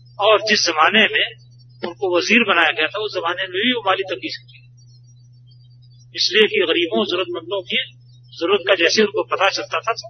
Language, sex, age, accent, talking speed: Hindi, male, 40-59, native, 170 wpm